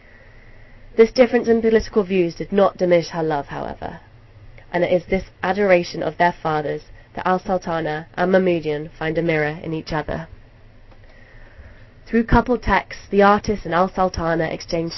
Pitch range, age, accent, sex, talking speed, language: 115-180 Hz, 20-39, British, female, 150 wpm, English